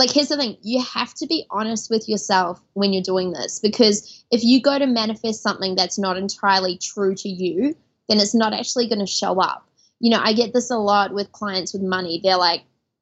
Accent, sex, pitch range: Australian, female, 205-265 Hz